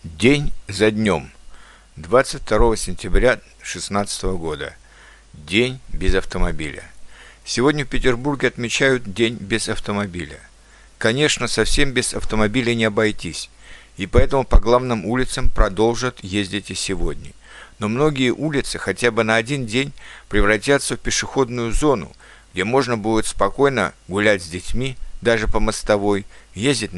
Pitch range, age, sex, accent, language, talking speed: 100-130 Hz, 50-69, male, native, Ukrainian, 120 wpm